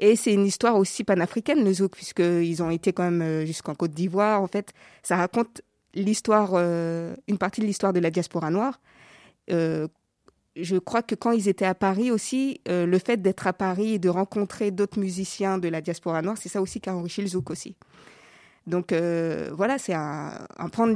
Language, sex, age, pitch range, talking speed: French, female, 20-39, 170-205 Hz, 205 wpm